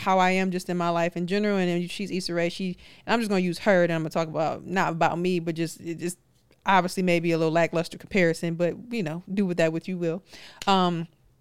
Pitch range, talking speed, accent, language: 170-200 Hz, 250 wpm, American, English